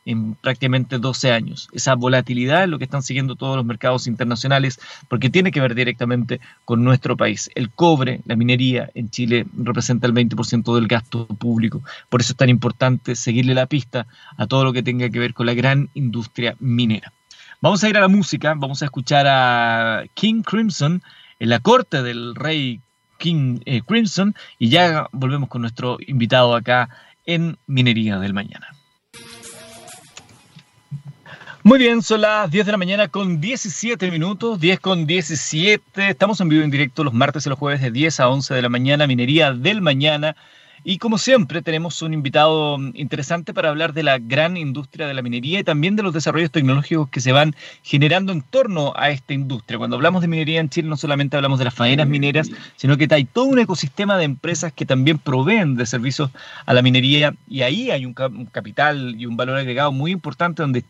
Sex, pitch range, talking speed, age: male, 125-165 Hz, 190 wpm, 30-49